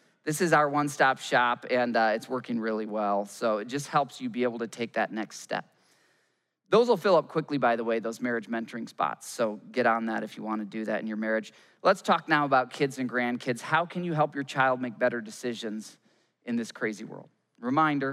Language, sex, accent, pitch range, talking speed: English, male, American, 115-155 Hz, 230 wpm